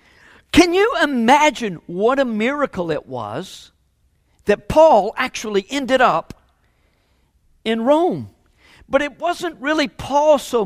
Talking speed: 120 wpm